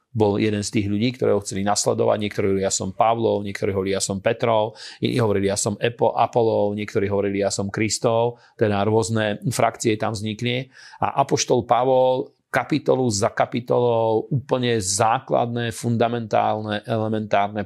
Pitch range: 105-115 Hz